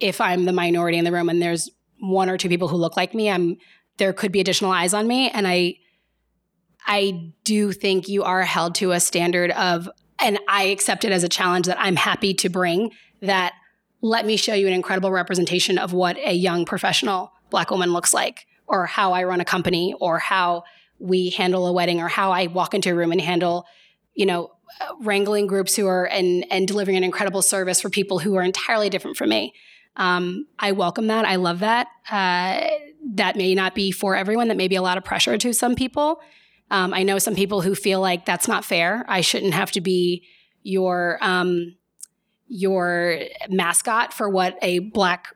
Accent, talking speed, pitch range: American, 205 wpm, 180-205 Hz